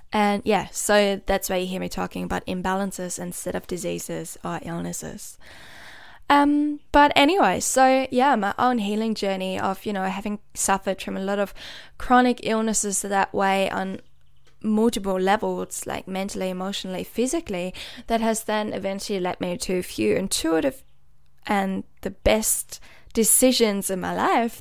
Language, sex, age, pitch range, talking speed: English, female, 10-29, 180-220 Hz, 150 wpm